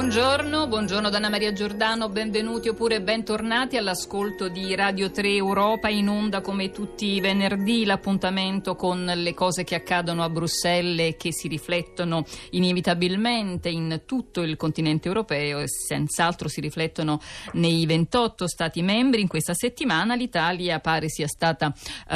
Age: 50-69